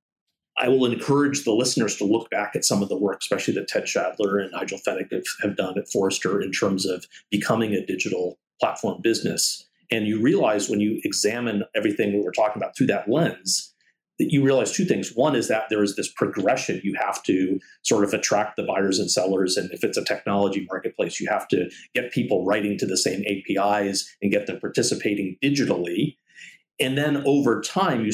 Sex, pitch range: male, 100-130 Hz